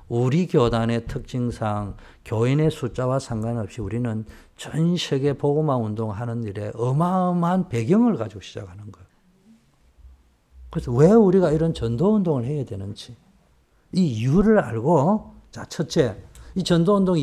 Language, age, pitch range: Korean, 50-69, 115-165 Hz